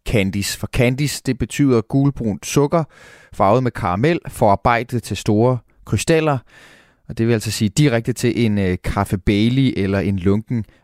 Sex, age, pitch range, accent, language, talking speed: male, 30-49, 100-130 Hz, native, Danish, 150 wpm